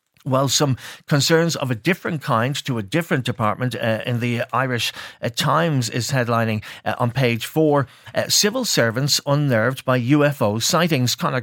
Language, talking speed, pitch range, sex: English, 165 wpm, 115-150 Hz, male